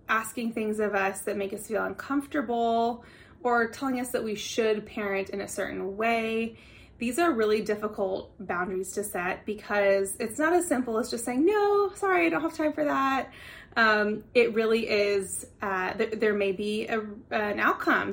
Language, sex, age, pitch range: English, female, 20-39, 200-235 Hz